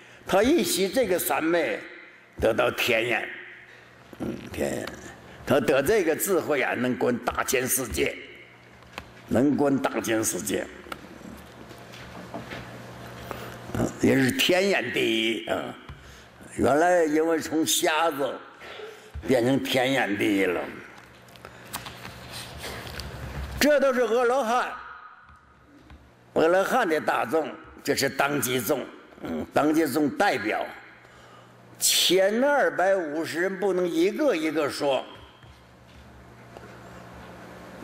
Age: 60-79